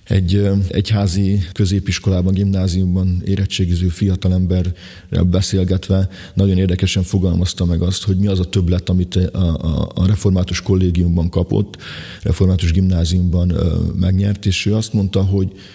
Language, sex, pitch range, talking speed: Hungarian, male, 95-105 Hz, 125 wpm